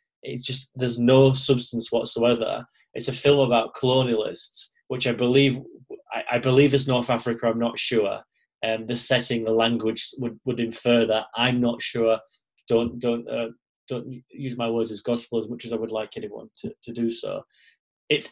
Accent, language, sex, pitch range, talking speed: British, English, male, 115-130 Hz, 185 wpm